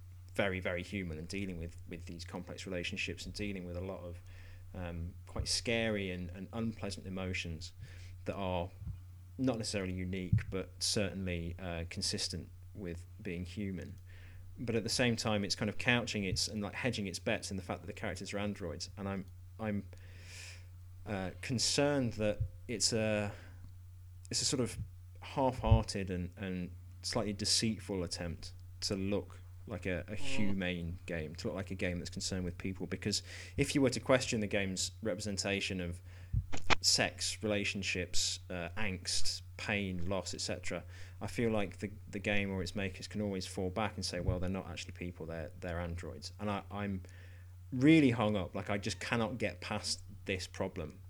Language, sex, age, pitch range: English, male, 30-49, 90-105 Hz